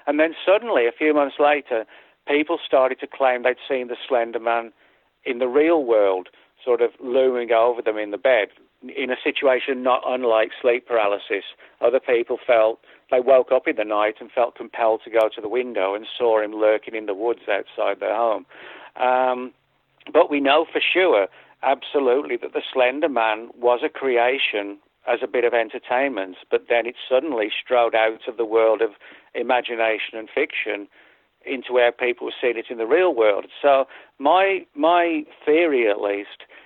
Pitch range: 110-140 Hz